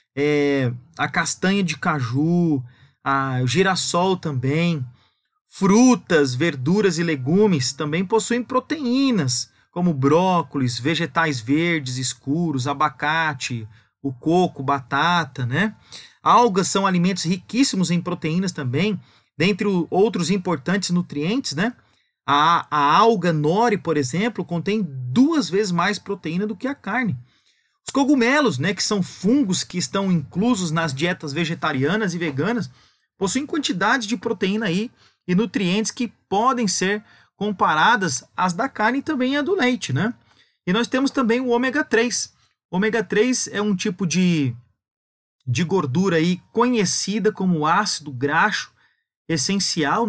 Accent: Brazilian